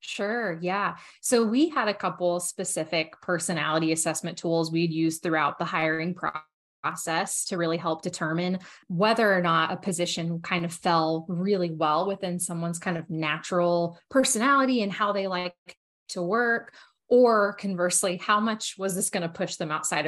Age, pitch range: 20-39, 175-210 Hz